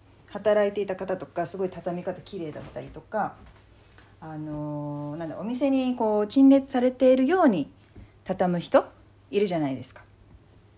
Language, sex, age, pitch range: Japanese, female, 40-59, 145-230 Hz